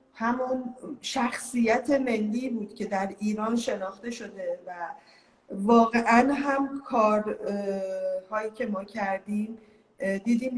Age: 30-49